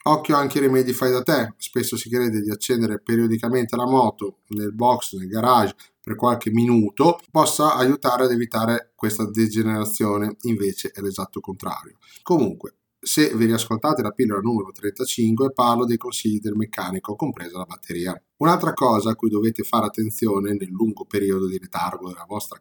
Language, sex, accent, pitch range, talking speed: Italian, male, native, 105-125 Hz, 165 wpm